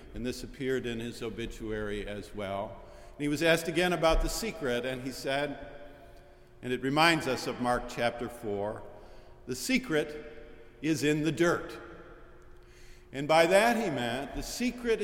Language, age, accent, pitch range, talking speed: English, 50-69, American, 110-150 Hz, 155 wpm